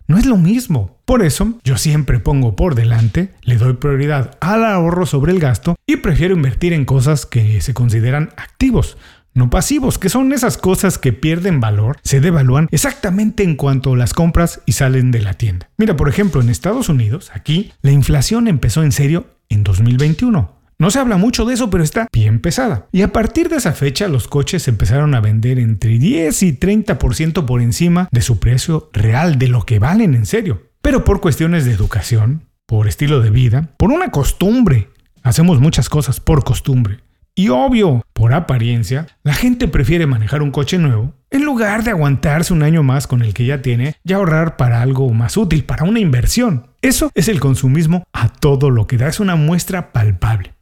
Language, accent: Spanish, Mexican